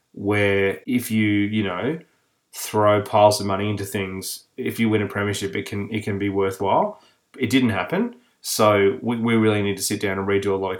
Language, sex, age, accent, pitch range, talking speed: English, male, 20-39, Australian, 100-115 Hz, 210 wpm